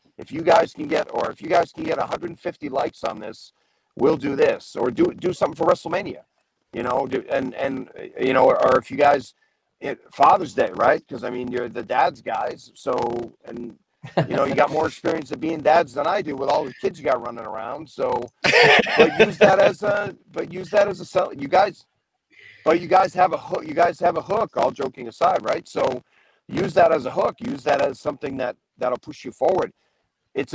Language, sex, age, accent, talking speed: English, male, 40-59, American, 225 wpm